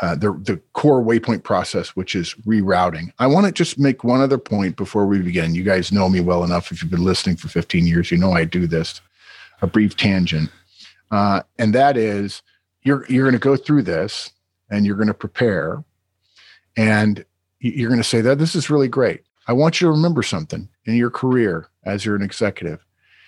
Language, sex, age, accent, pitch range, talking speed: English, male, 40-59, American, 95-130 Hz, 205 wpm